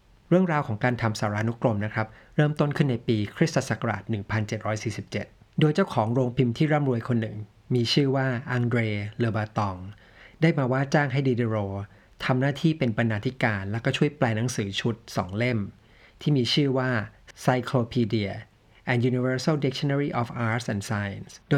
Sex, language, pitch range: male, Thai, 110-135 Hz